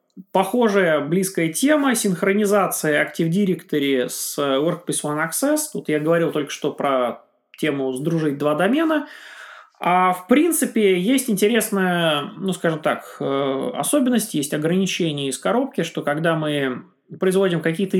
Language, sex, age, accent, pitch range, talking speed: Russian, male, 20-39, native, 150-200 Hz, 125 wpm